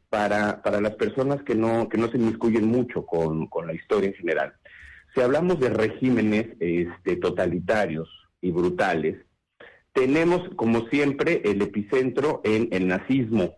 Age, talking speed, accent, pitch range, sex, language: 50-69, 145 wpm, Mexican, 95-145 Hz, male, English